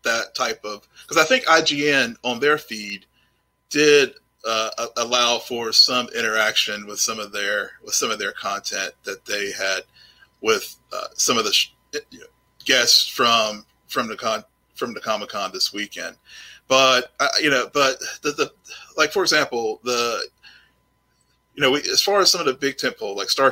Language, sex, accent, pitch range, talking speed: English, male, American, 110-165 Hz, 180 wpm